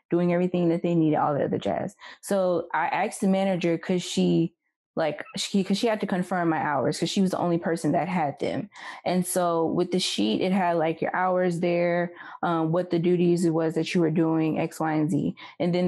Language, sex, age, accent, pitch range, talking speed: English, female, 20-39, American, 165-190 Hz, 230 wpm